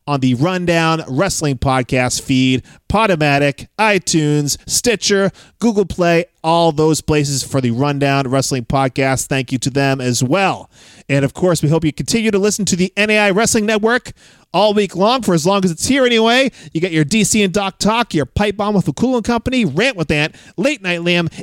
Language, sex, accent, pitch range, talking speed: English, male, American, 145-225 Hz, 195 wpm